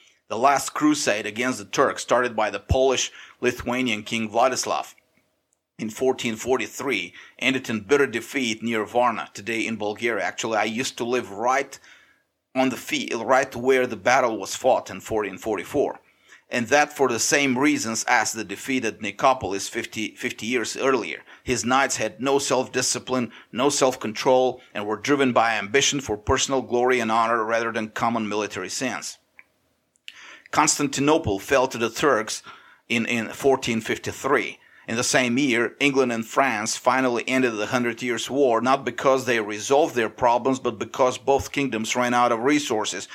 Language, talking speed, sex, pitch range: English, 155 wpm, male, 115-135 Hz